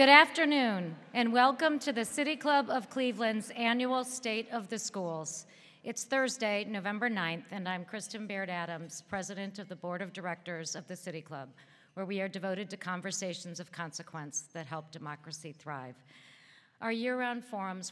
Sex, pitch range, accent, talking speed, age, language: female, 160-195 Hz, American, 160 wpm, 50-69, English